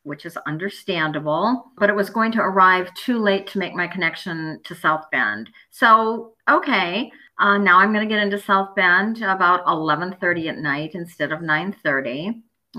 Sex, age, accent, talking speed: female, 50-69, American, 170 wpm